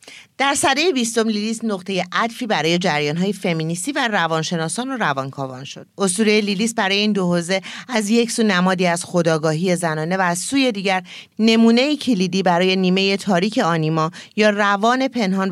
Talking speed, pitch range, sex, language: 155 wpm, 170-225 Hz, female, Persian